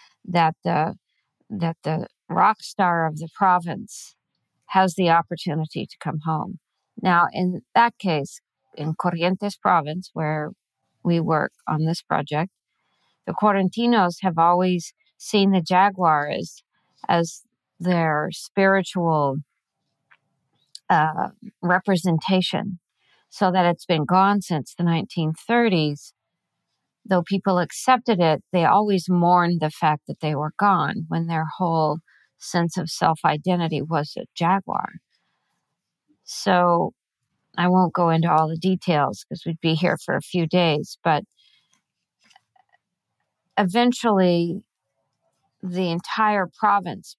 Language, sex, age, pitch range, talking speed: English, female, 50-69, 160-190 Hz, 115 wpm